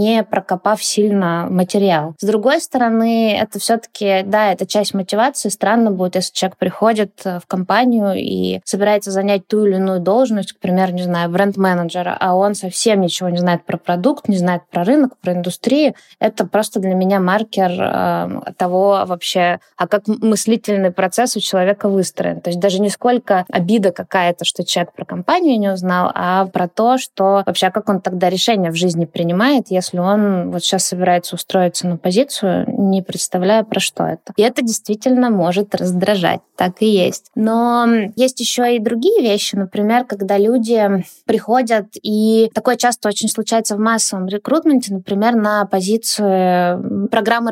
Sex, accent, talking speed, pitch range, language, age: female, native, 165 wpm, 185-225 Hz, Russian, 20-39